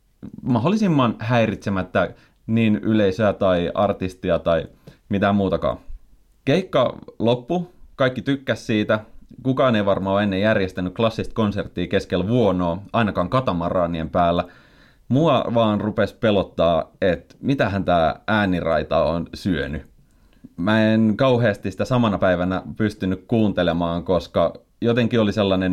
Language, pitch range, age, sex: Finnish, 90-115 Hz, 30-49, male